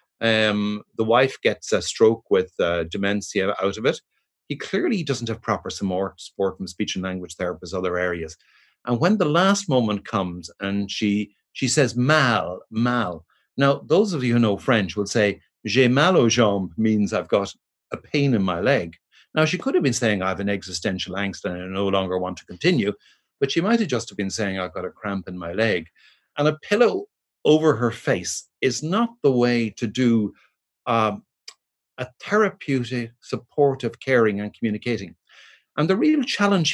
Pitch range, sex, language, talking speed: 100-140 Hz, male, English, 185 wpm